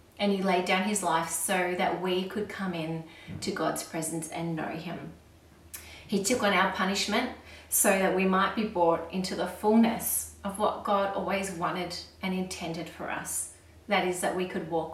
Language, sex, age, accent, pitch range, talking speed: English, female, 30-49, Australian, 170-200 Hz, 190 wpm